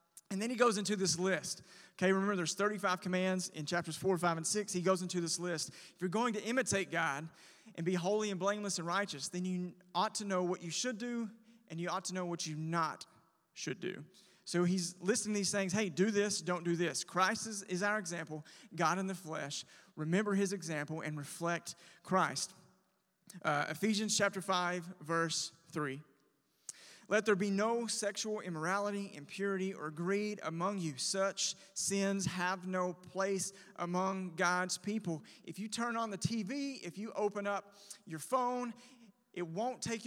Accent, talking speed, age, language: American, 180 wpm, 30-49, English